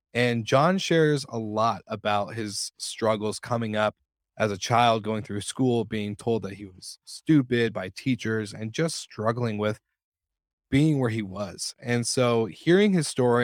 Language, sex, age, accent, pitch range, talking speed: English, male, 20-39, American, 105-130 Hz, 165 wpm